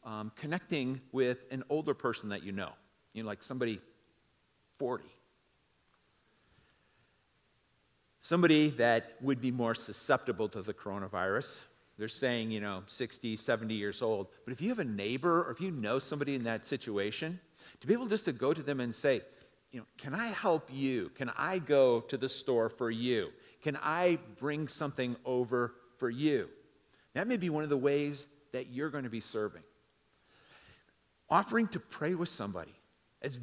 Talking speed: 170 wpm